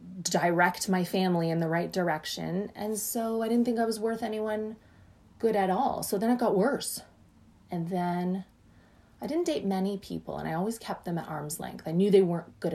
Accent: American